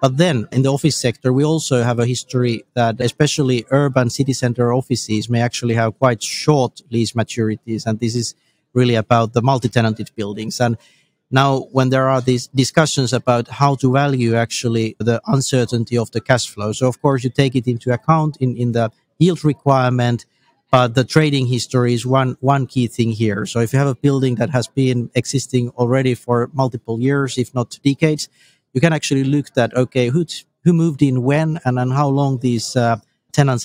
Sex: male